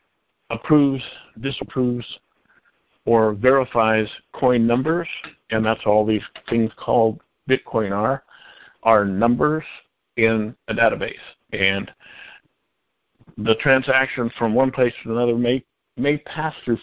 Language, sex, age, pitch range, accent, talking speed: English, male, 50-69, 110-130 Hz, American, 110 wpm